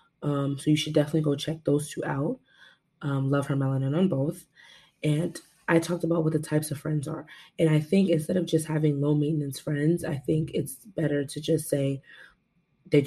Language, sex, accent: English, female, American